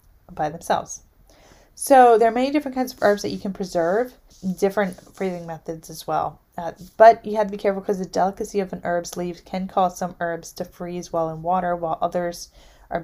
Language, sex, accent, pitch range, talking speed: English, female, American, 170-205 Hz, 205 wpm